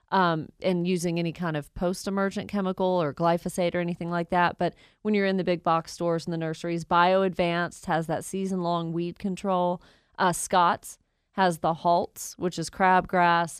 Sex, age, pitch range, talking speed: female, 30-49, 170-195 Hz, 170 wpm